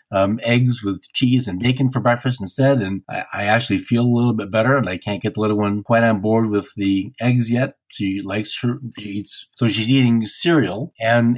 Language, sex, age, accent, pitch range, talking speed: English, male, 50-69, American, 110-130 Hz, 220 wpm